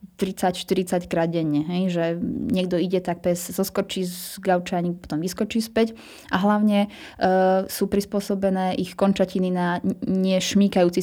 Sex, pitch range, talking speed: female, 180-205 Hz, 115 wpm